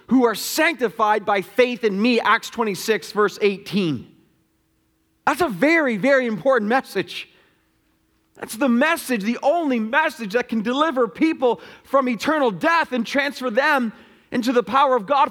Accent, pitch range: American, 230-310 Hz